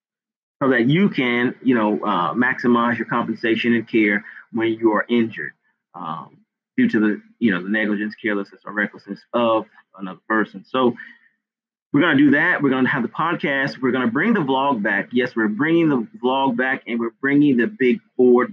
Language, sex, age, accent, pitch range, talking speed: English, male, 30-49, American, 110-140 Hz, 200 wpm